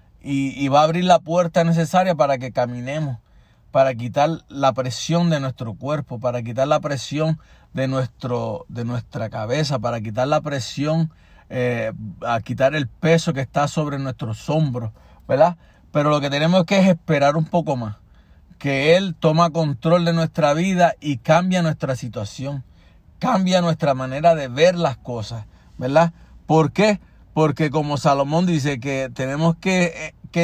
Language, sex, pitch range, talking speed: Spanish, male, 125-170 Hz, 160 wpm